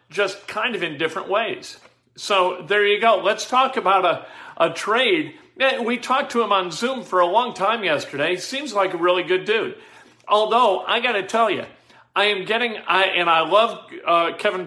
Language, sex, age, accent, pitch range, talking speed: English, male, 50-69, American, 185-240 Hz, 195 wpm